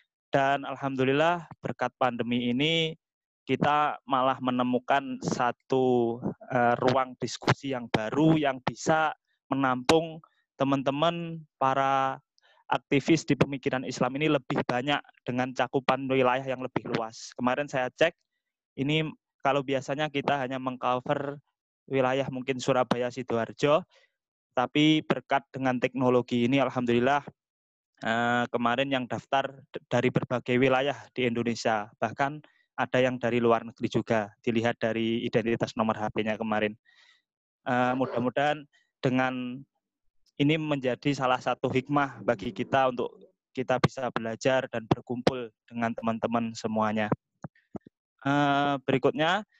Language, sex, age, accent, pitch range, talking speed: Indonesian, male, 20-39, native, 120-140 Hz, 110 wpm